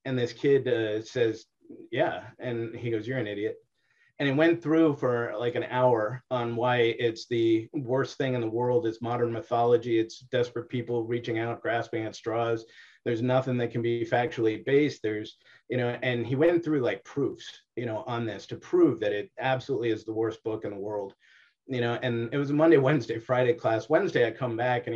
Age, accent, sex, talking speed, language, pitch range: 30-49, American, male, 205 wpm, English, 115-135 Hz